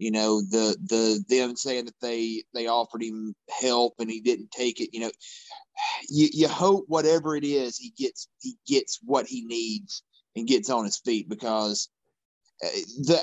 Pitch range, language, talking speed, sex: 130-175 Hz, English, 175 wpm, male